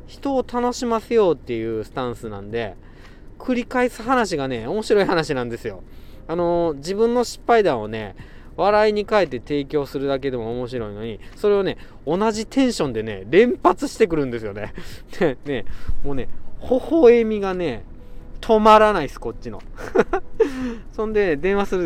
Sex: male